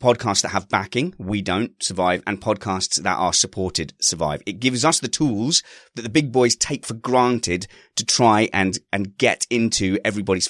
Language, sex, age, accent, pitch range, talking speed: English, male, 30-49, British, 95-120 Hz, 185 wpm